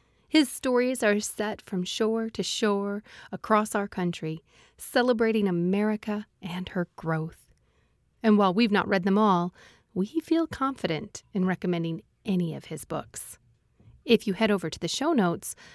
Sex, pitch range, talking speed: female, 175-220 Hz, 150 wpm